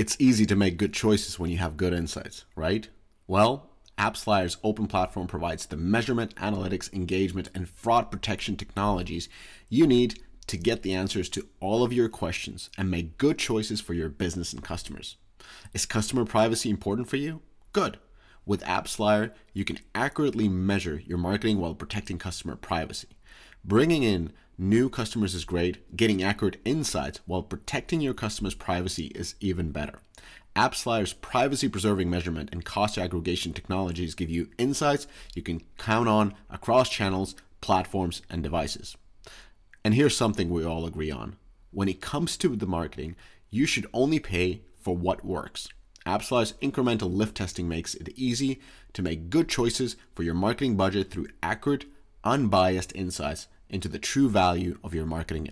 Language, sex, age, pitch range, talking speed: English, male, 30-49, 90-110 Hz, 160 wpm